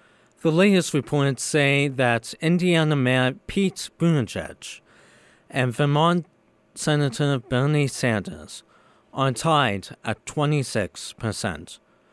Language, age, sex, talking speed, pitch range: English, 50-69, male, 95 wpm, 120-150 Hz